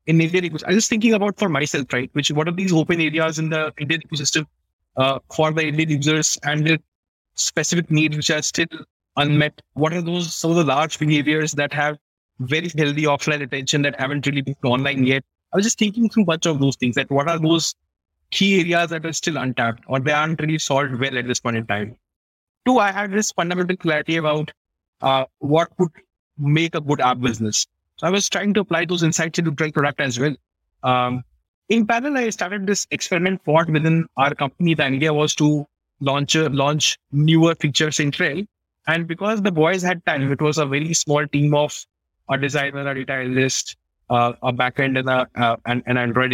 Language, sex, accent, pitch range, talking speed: English, male, Indian, 130-165 Hz, 205 wpm